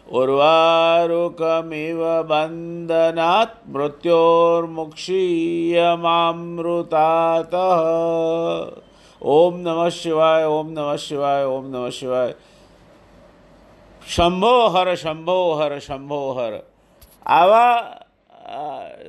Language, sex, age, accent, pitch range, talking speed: Gujarati, male, 50-69, native, 155-195 Hz, 55 wpm